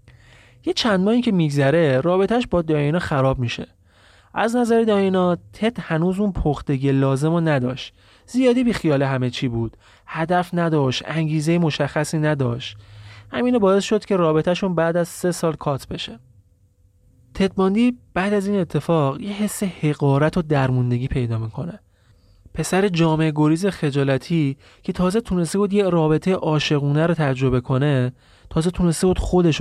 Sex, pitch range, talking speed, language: male, 130-185 Hz, 145 wpm, Persian